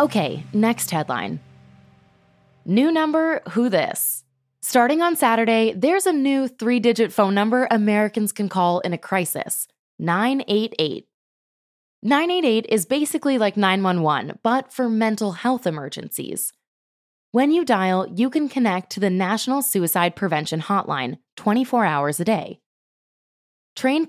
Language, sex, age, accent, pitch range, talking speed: English, female, 20-39, American, 180-245 Hz, 125 wpm